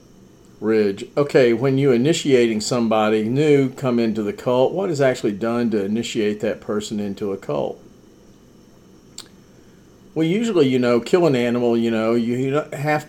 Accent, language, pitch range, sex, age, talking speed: American, English, 110-125 Hz, male, 50-69, 150 wpm